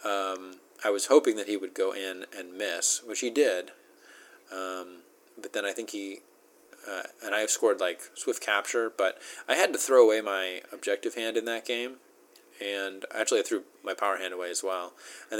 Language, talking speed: English, 200 wpm